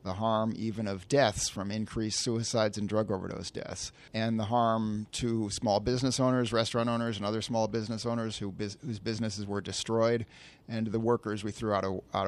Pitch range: 110-130 Hz